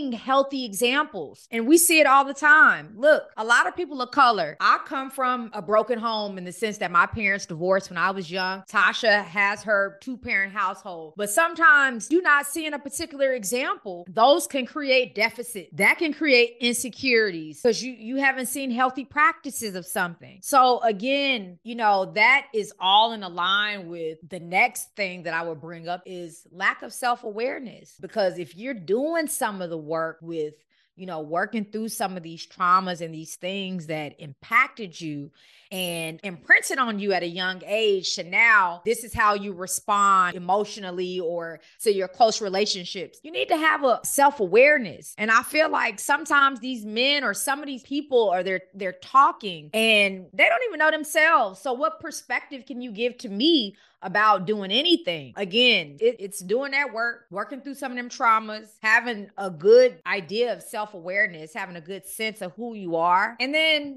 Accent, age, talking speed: American, 30-49, 185 wpm